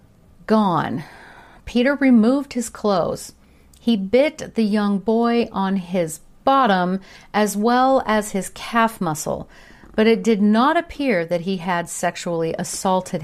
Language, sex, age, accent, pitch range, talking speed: English, female, 50-69, American, 180-235 Hz, 130 wpm